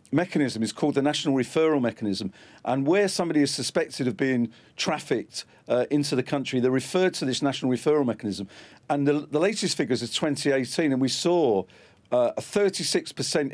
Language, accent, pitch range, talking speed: English, British, 125-155 Hz, 175 wpm